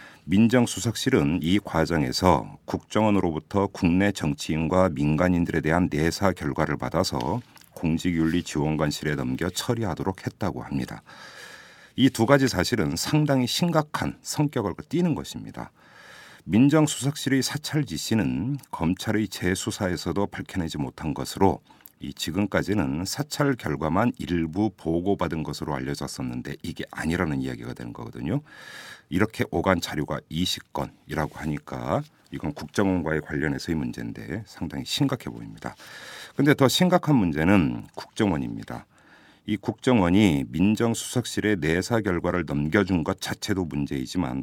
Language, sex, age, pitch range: Korean, male, 50-69, 80-115 Hz